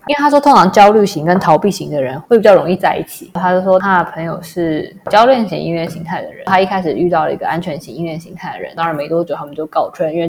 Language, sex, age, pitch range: Chinese, female, 20-39, 165-190 Hz